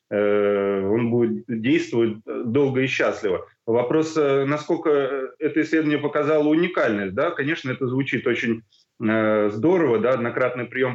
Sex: male